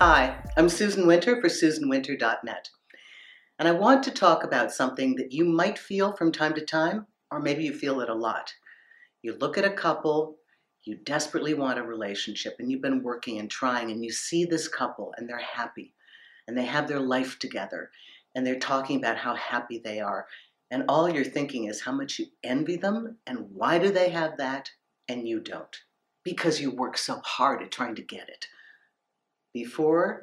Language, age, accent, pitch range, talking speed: English, 50-69, American, 125-175 Hz, 190 wpm